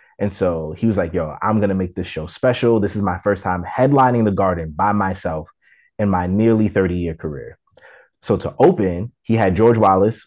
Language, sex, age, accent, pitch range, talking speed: English, male, 30-49, American, 95-130 Hz, 205 wpm